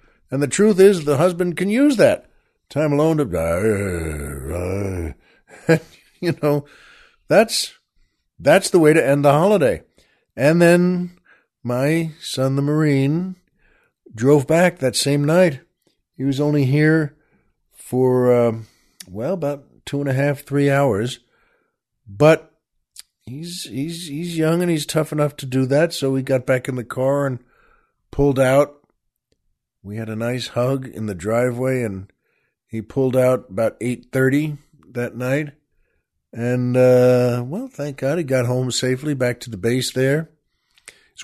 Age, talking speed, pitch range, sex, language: 50-69, 145 wpm, 115-150 Hz, male, English